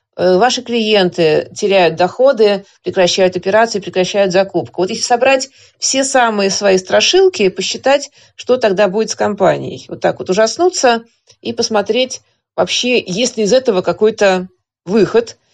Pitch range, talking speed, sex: 185-245 Hz, 135 wpm, female